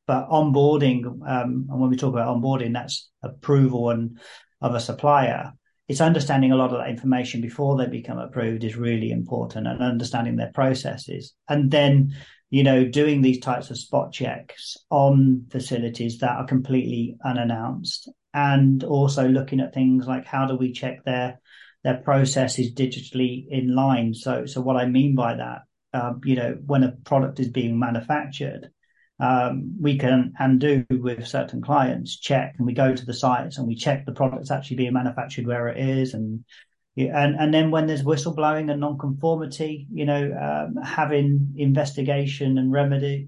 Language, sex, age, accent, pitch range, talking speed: English, male, 40-59, British, 125-140 Hz, 170 wpm